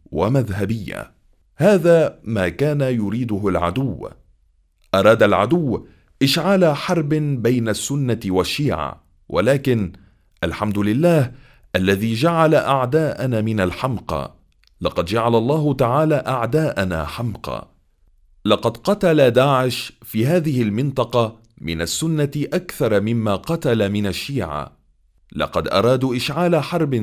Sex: male